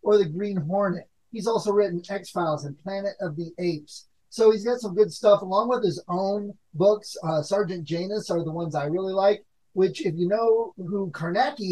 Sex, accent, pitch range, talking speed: male, American, 165-200 Hz, 200 wpm